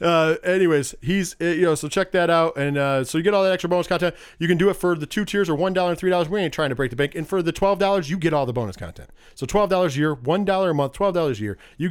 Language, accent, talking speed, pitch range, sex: English, American, 330 wpm, 135-180 Hz, male